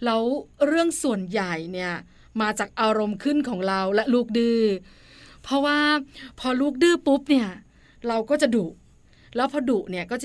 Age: 20-39